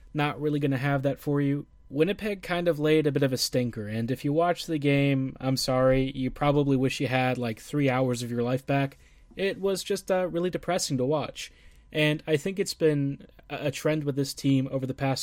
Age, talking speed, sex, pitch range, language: 20-39, 230 wpm, male, 130-150 Hz, English